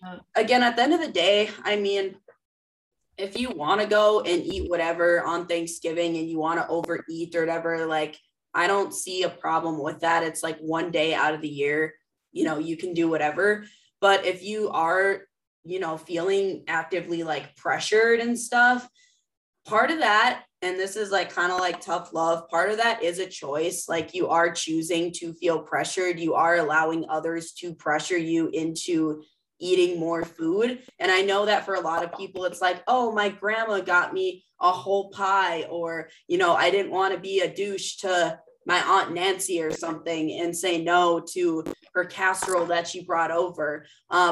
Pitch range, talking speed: 165-195 Hz, 190 wpm